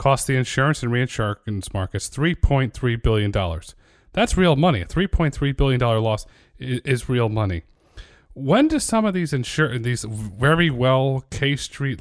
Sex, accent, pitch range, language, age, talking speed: male, American, 105-145 Hz, English, 30-49, 145 wpm